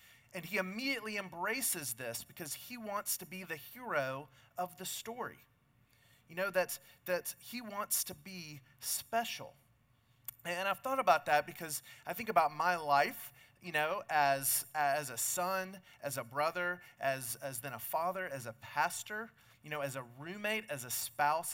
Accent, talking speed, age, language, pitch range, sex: American, 165 wpm, 30-49, English, 135-180 Hz, male